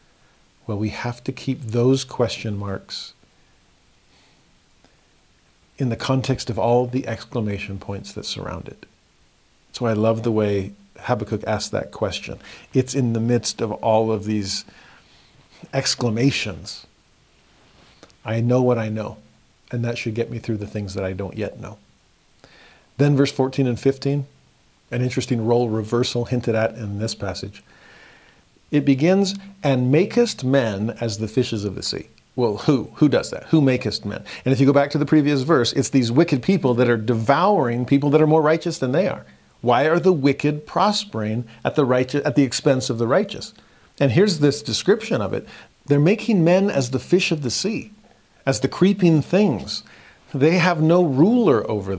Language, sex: English, male